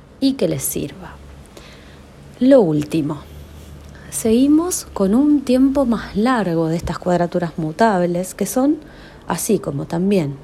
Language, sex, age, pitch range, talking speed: Amharic, female, 30-49, 160-210 Hz, 120 wpm